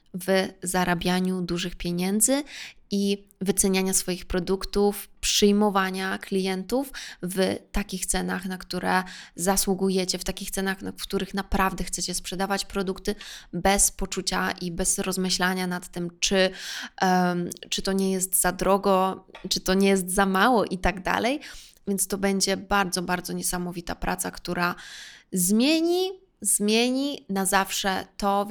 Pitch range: 185-200 Hz